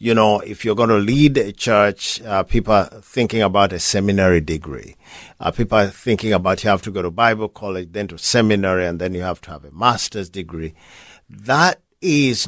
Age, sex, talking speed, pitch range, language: 50-69, male, 205 wpm, 100-130 Hz, English